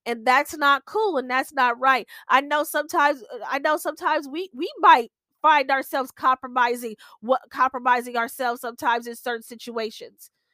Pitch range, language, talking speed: 250-285 Hz, English, 155 wpm